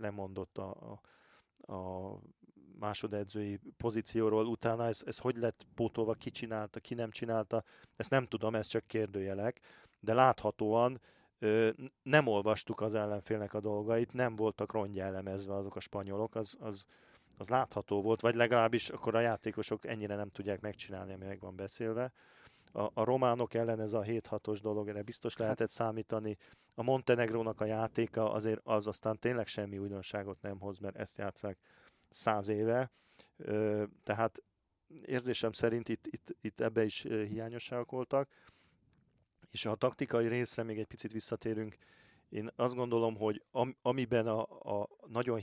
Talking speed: 150 wpm